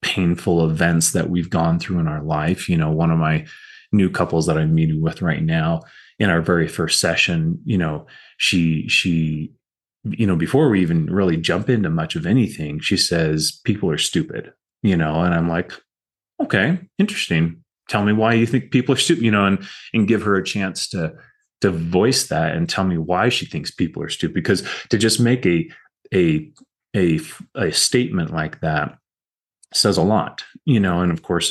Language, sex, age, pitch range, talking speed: English, male, 30-49, 80-110 Hz, 195 wpm